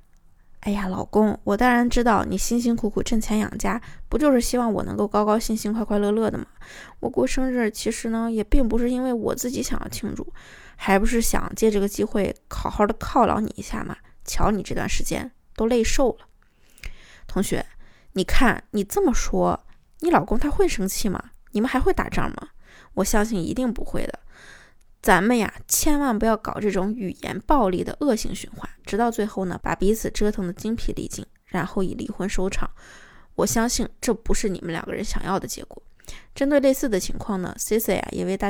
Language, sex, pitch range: Chinese, female, 205-245 Hz